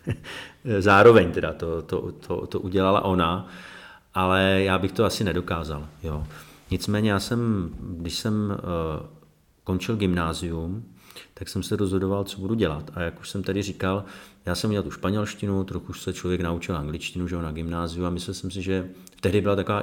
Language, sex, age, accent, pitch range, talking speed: Czech, male, 40-59, native, 85-95 Hz, 175 wpm